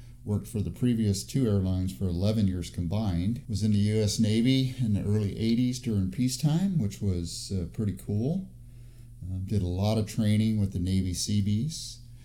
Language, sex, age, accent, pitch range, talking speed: English, male, 50-69, American, 95-120 Hz, 175 wpm